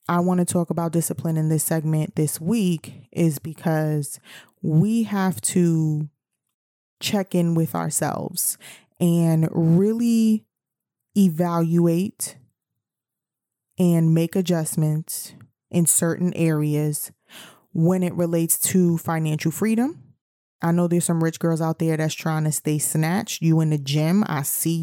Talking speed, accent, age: 130 wpm, American, 20-39